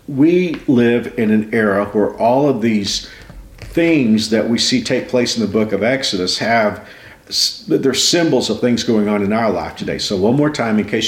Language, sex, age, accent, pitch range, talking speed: English, male, 50-69, American, 100-130 Hz, 200 wpm